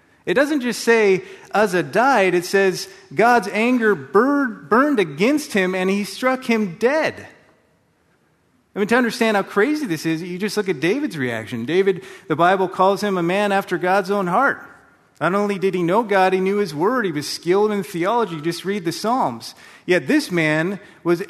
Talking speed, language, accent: 185 wpm, English, American